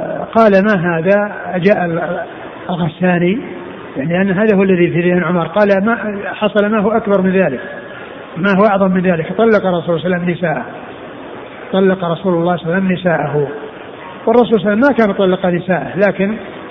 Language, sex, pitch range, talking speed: Arabic, male, 170-200 Hz, 155 wpm